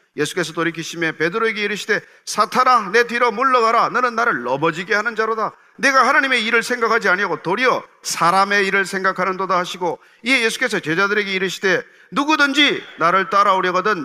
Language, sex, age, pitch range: Korean, male, 40-59, 190-270 Hz